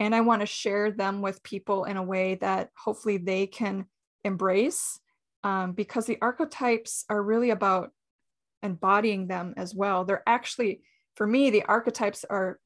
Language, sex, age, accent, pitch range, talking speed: English, female, 20-39, American, 195-230 Hz, 160 wpm